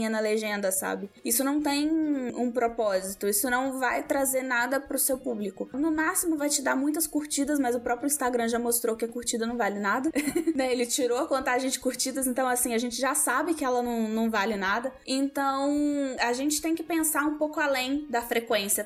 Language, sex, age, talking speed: Portuguese, female, 10-29, 205 wpm